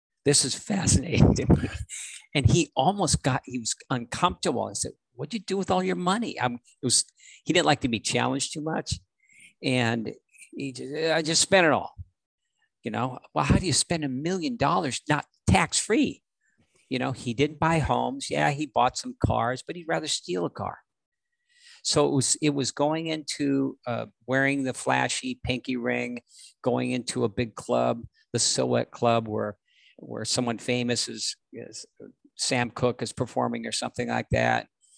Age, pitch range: 50-69, 115-145 Hz